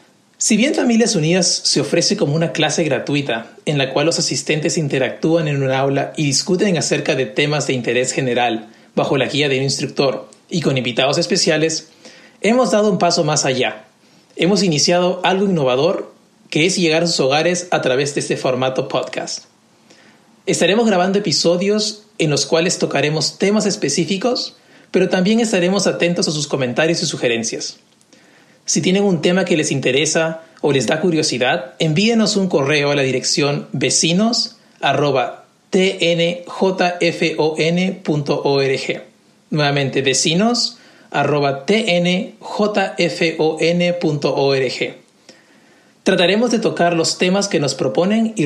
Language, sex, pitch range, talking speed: Spanish, male, 150-195 Hz, 130 wpm